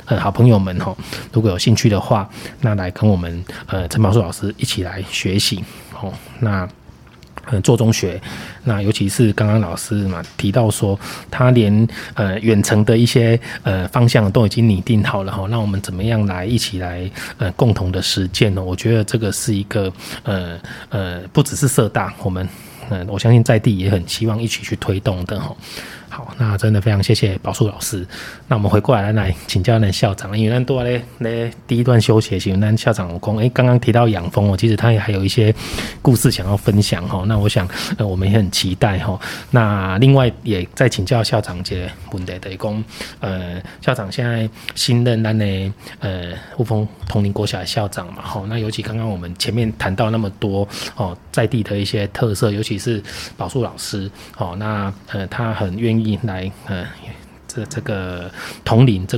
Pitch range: 95-115 Hz